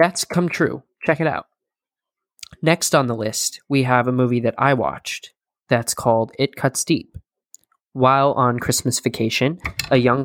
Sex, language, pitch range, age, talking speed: male, English, 115-140 Hz, 20-39, 165 wpm